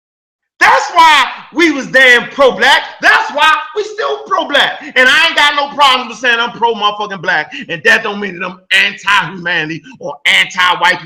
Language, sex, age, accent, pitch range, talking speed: English, male, 30-49, American, 235-335 Hz, 175 wpm